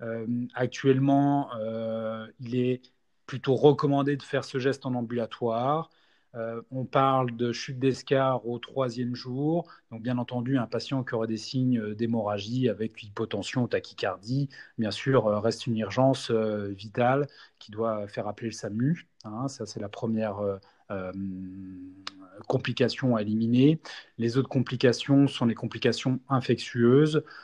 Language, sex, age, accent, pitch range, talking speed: French, male, 30-49, French, 110-130 Hz, 145 wpm